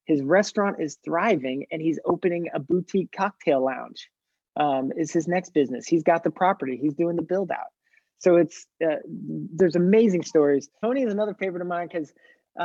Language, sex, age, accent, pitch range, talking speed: English, male, 30-49, American, 145-185 Hz, 180 wpm